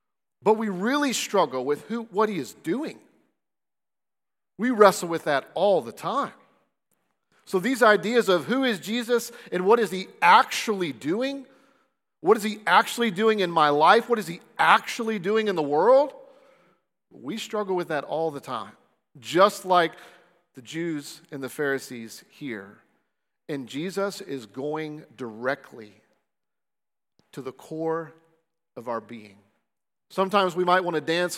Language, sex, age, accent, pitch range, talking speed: English, male, 40-59, American, 160-210 Hz, 150 wpm